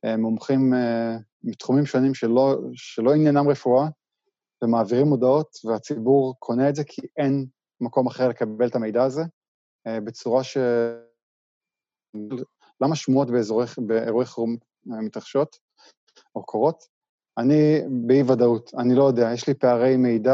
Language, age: Hebrew, 20-39